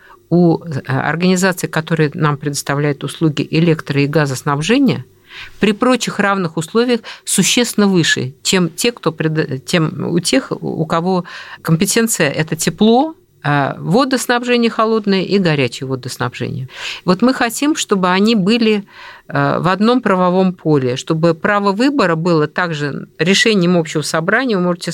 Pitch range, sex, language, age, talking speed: 155-220 Hz, female, Russian, 50-69, 115 wpm